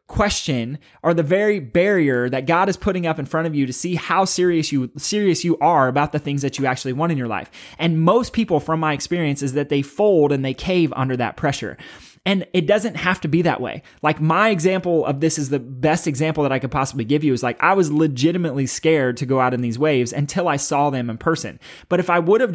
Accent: American